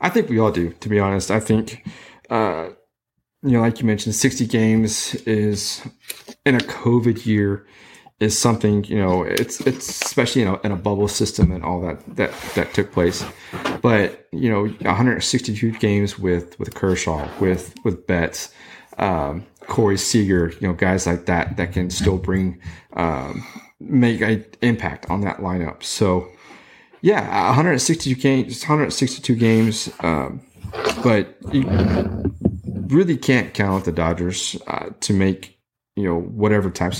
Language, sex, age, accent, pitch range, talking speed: English, male, 30-49, American, 90-110 Hz, 155 wpm